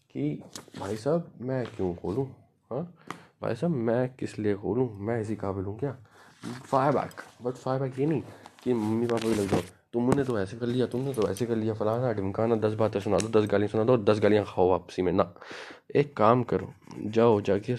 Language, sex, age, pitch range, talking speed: Punjabi, male, 20-39, 100-125 Hz, 215 wpm